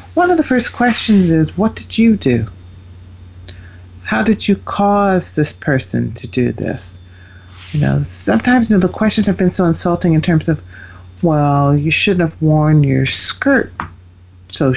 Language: English